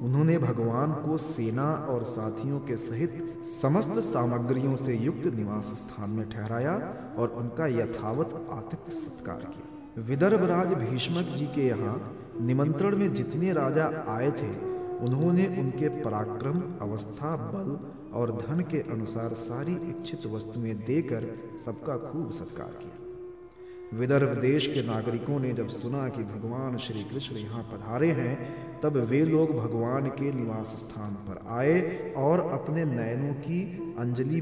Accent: native